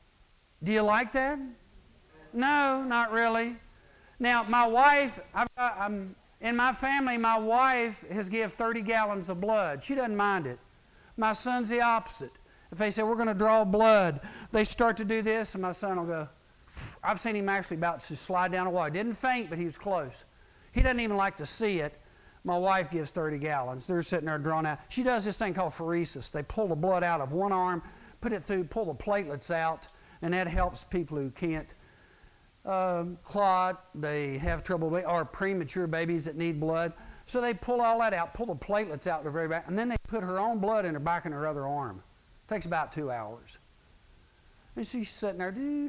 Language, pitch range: English, 155-225 Hz